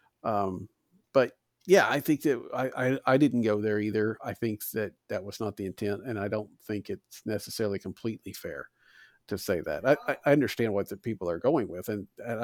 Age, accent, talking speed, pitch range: 50-69, American, 205 wpm, 100-125 Hz